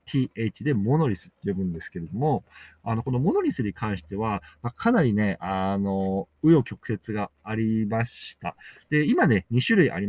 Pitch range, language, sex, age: 105-170 Hz, Japanese, male, 50-69